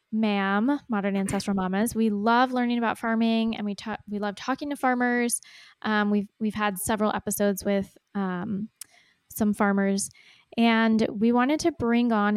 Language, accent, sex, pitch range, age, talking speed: English, American, female, 200-230 Hz, 20-39, 160 wpm